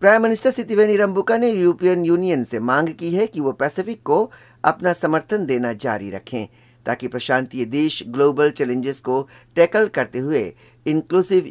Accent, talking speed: native, 155 wpm